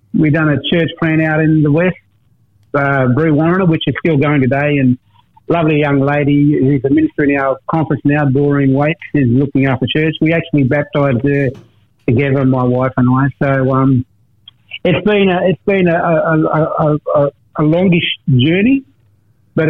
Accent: Australian